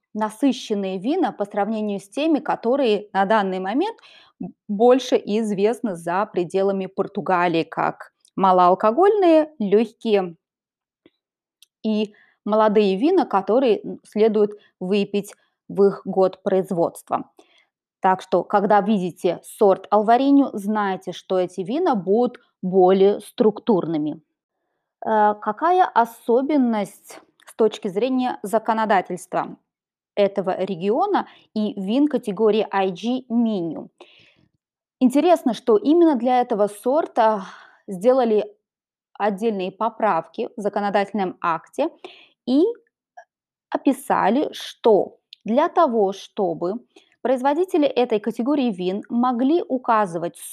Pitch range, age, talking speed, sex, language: 200-255 Hz, 20-39, 95 wpm, female, Russian